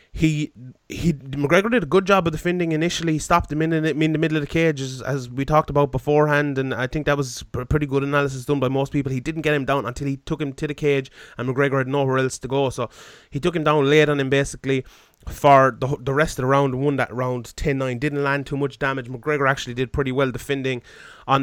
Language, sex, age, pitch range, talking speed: English, male, 20-39, 130-150 Hz, 250 wpm